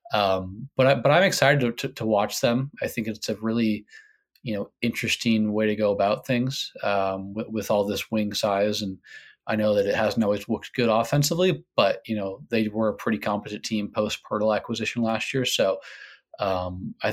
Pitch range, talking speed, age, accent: 105-120 Hz, 205 wpm, 20-39, American